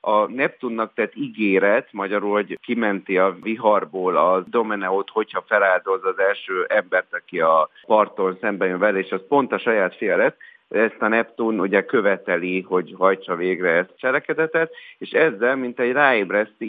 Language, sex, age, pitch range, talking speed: Hungarian, male, 50-69, 100-130 Hz, 155 wpm